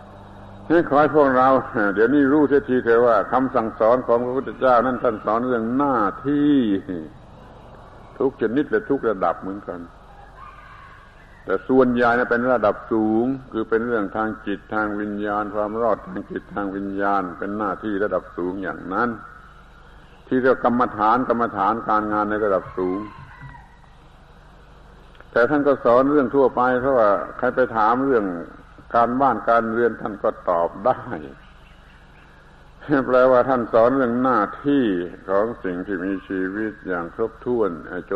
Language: Thai